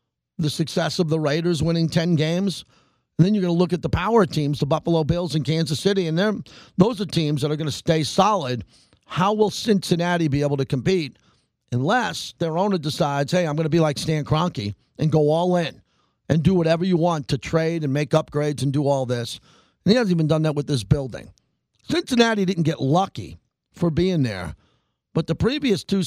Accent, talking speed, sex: American, 210 wpm, male